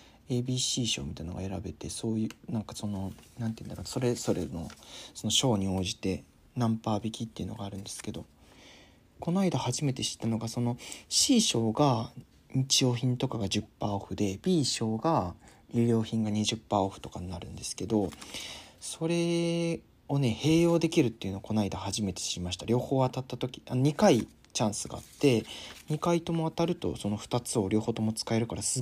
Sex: male